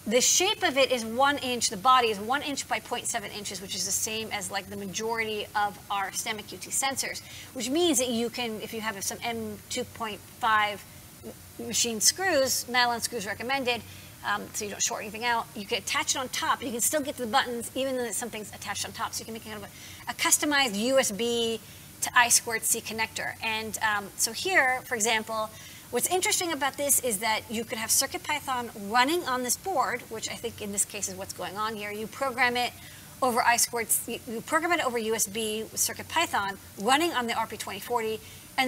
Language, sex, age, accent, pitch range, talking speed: English, female, 30-49, American, 220-260 Hz, 205 wpm